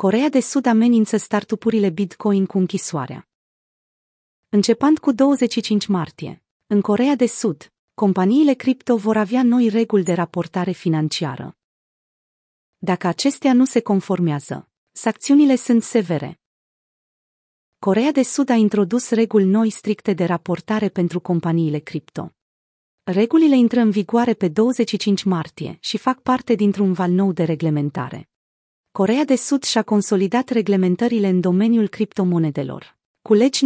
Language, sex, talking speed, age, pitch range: Romanian, female, 130 wpm, 30-49, 175-230 Hz